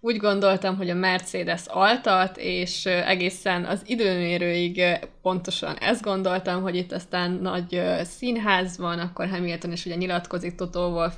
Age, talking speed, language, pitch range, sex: 20-39, 140 wpm, Hungarian, 175-205 Hz, female